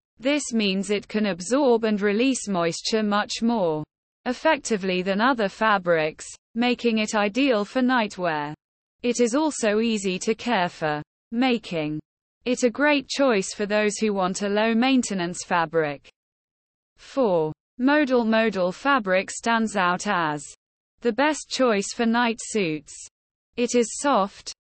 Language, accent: English, British